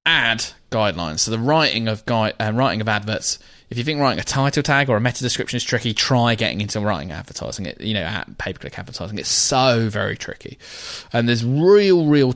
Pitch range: 105-130 Hz